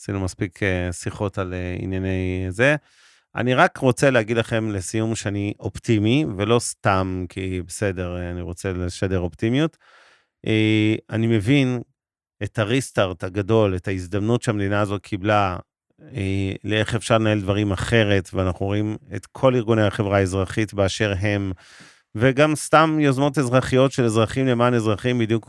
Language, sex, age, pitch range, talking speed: Hebrew, male, 40-59, 95-115 Hz, 130 wpm